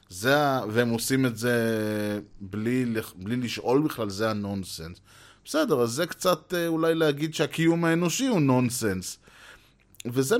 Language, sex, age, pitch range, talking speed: Hebrew, male, 30-49, 105-145 Hz, 125 wpm